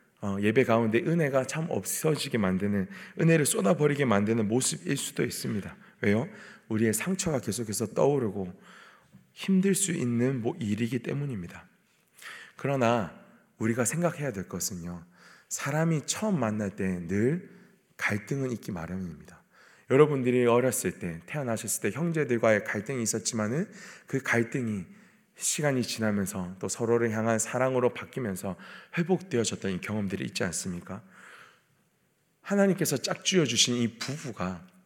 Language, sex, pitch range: Korean, male, 110-155 Hz